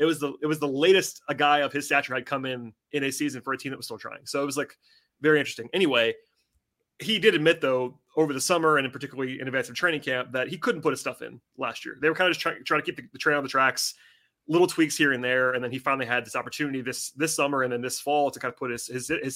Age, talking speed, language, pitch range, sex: 30-49, 300 wpm, English, 130-155 Hz, male